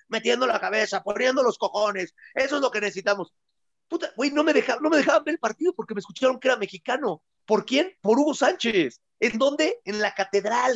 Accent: Mexican